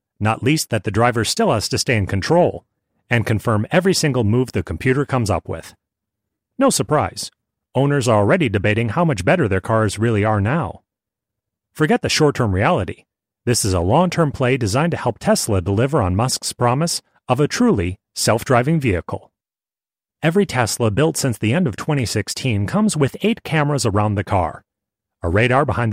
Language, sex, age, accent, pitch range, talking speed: English, male, 30-49, American, 105-145 Hz, 175 wpm